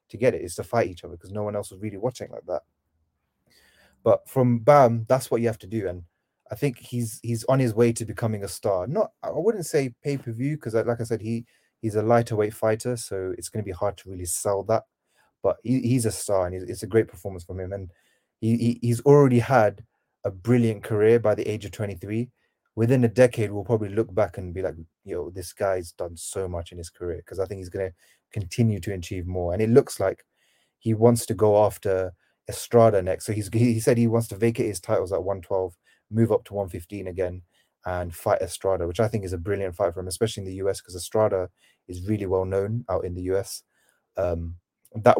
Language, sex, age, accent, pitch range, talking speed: English, male, 30-49, British, 95-115 Hz, 235 wpm